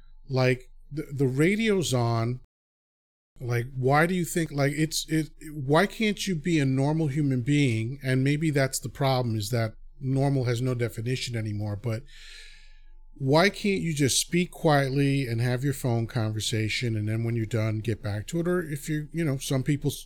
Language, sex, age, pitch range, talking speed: English, male, 40-59, 120-160 Hz, 185 wpm